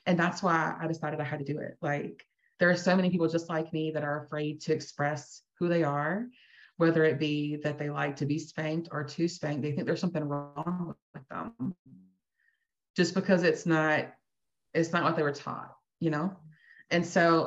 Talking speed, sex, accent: 205 wpm, female, American